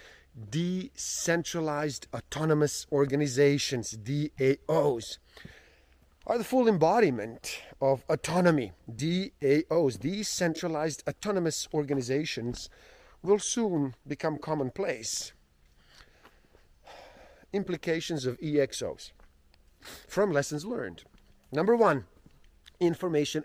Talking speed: 70 wpm